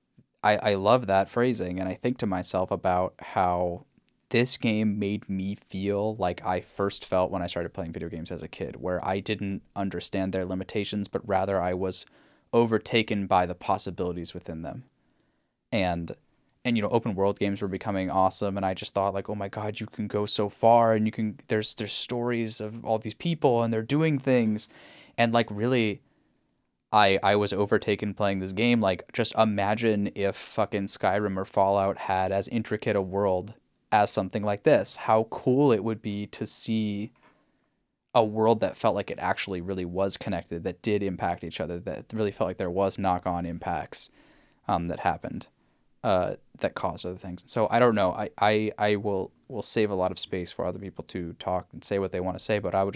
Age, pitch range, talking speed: 10-29, 95-110 Hz, 200 wpm